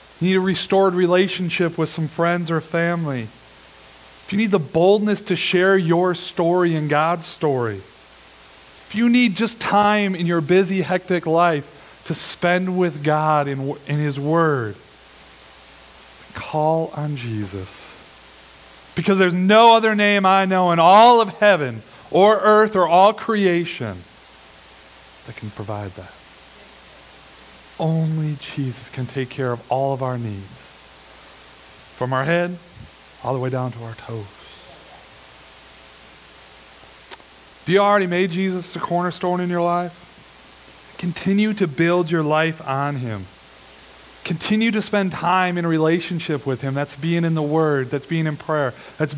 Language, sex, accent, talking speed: English, male, American, 145 wpm